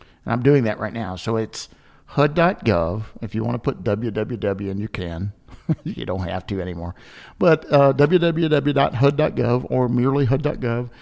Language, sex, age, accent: English, male, 50-69, American